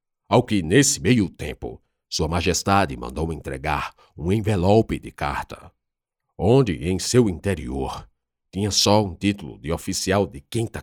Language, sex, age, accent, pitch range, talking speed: Portuguese, male, 50-69, Brazilian, 75-105 Hz, 140 wpm